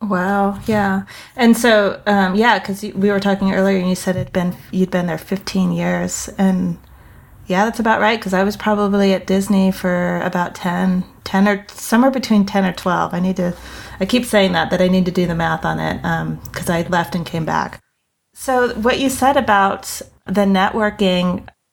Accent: American